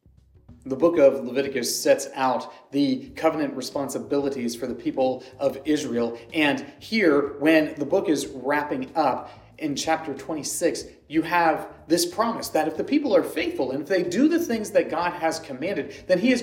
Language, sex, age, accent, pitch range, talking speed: English, male, 30-49, American, 145-210 Hz, 175 wpm